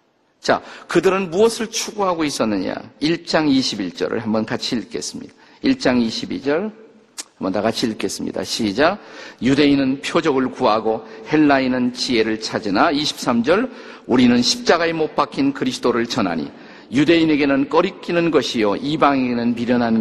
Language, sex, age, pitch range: Korean, male, 50-69, 135-195 Hz